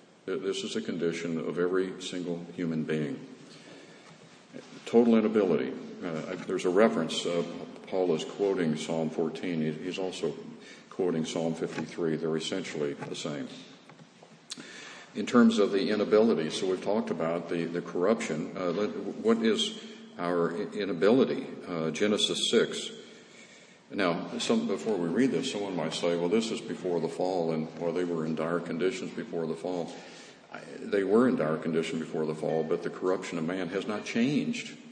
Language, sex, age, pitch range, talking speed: English, male, 50-69, 85-100 Hz, 160 wpm